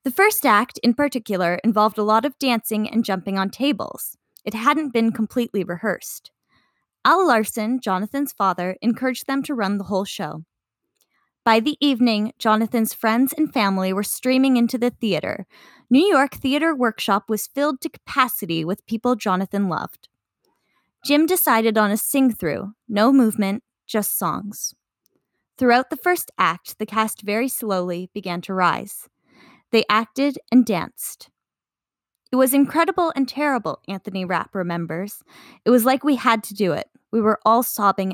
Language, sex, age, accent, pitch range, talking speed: English, female, 10-29, American, 205-265 Hz, 155 wpm